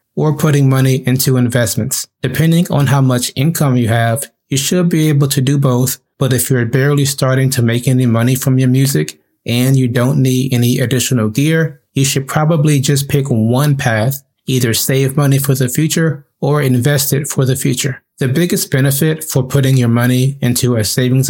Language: English